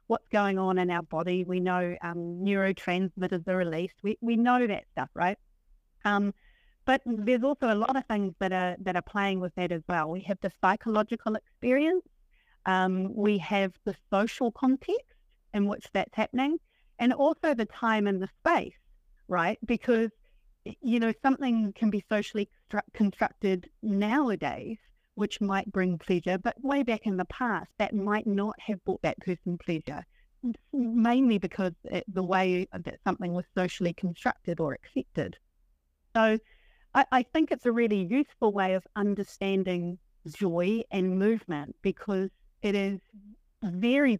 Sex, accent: female, Australian